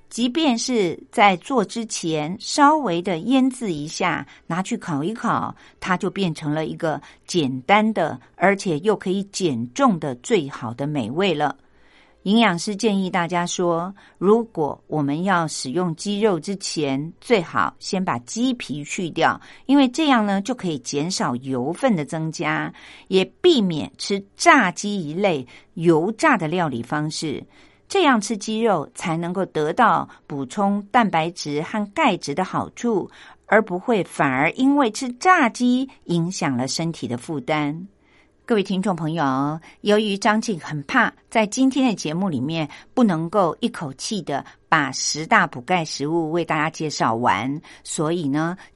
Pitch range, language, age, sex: 155-220 Hz, Chinese, 50-69, female